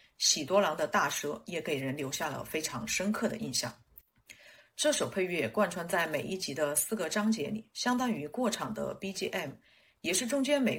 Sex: female